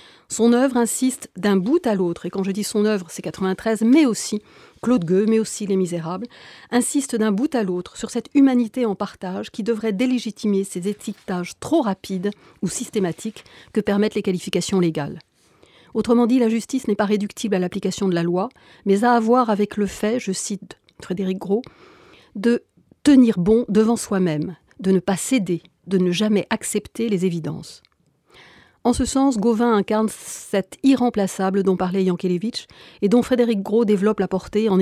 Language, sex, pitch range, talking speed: French, female, 190-230 Hz, 190 wpm